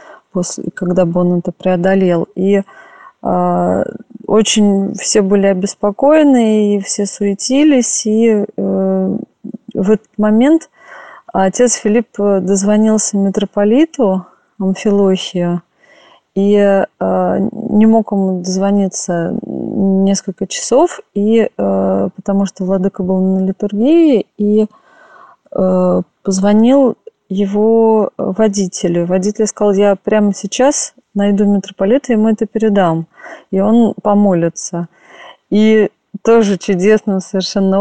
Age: 20-39